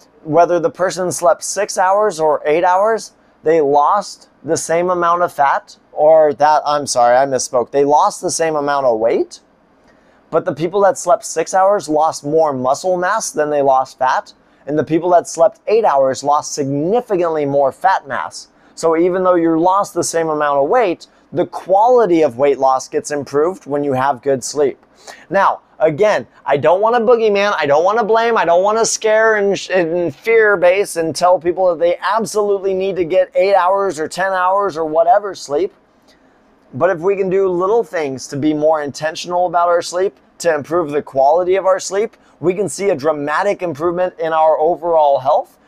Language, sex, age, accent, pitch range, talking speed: English, male, 20-39, American, 150-195 Hz, 195 wpm